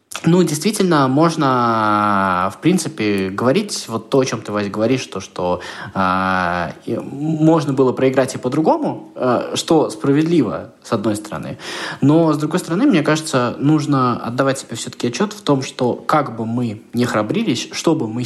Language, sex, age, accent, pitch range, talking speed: Russian, male, 20-39, native, 115-150 Hz, 160 wpm